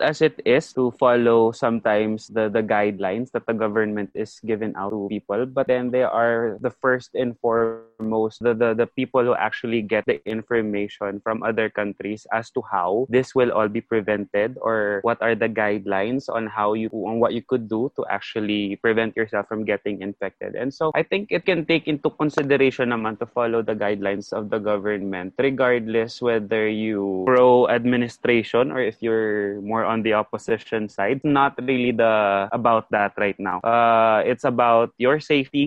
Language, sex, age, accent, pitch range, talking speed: English, male, 20-39, Filipino, 110-125 Hz, 180 wpm